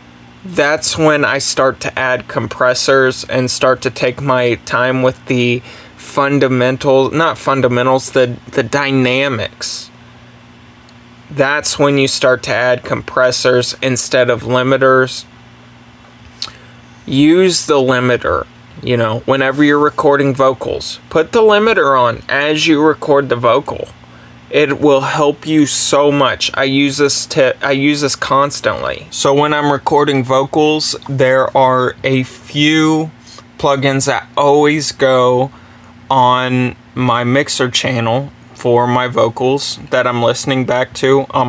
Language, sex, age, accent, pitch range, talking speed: English, male, 20-39, American, 125-140 Hz, 130 wpm